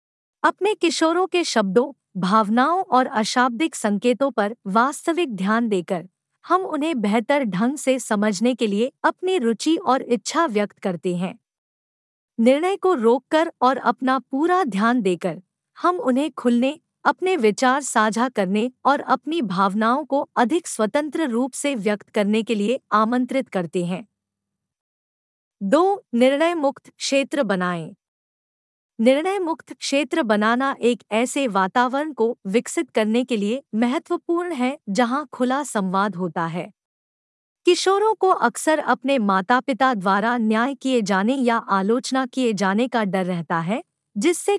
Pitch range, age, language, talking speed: 215-290 Hz, 50-69, Hindi, 135 wpm